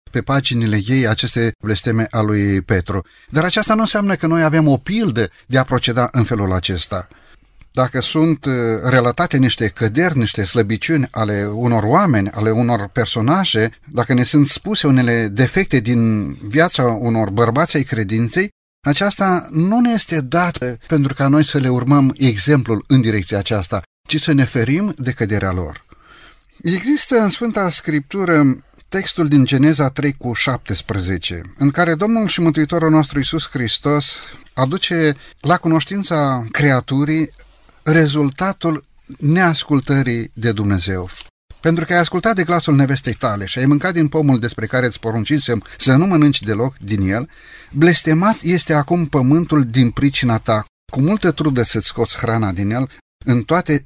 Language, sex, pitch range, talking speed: Romanian, male, 115-160 Hz, 150 wpm